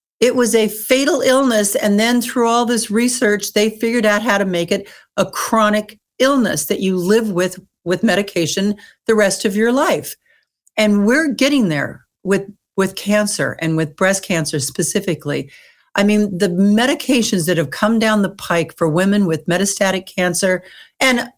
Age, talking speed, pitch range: 60-79, 170 wpm, 170-230 Hz